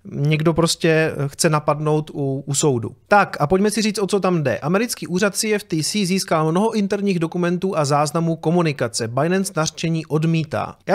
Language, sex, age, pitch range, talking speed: Czech, male, 30-49, 150-185 Hz, 165 wpm